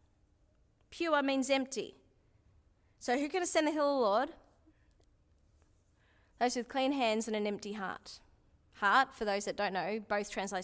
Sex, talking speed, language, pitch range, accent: female, 160 wpm, English, 210-305 Hz, Australian